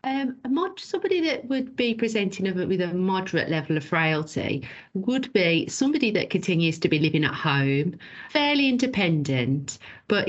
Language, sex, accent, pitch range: English, female, British, 150-180 Hz